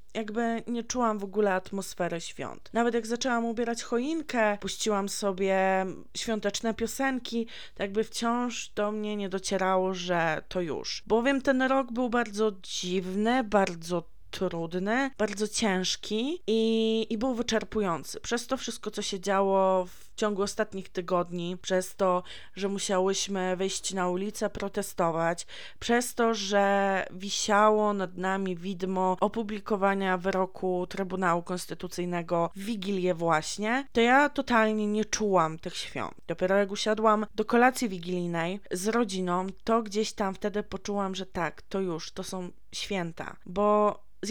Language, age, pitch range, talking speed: Polish, 20-39, 185-225 Hz, 140 wpm